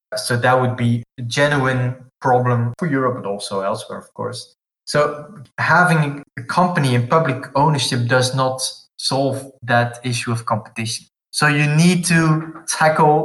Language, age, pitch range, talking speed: English, 20-39, 120-130 Hz, 150 wpm